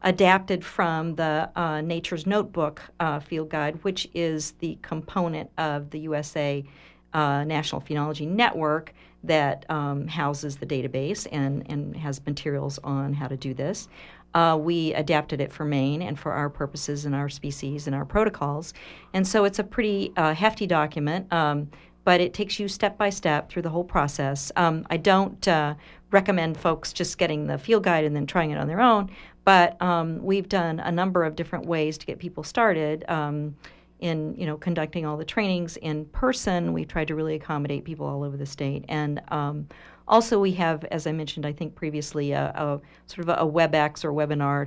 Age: 50-69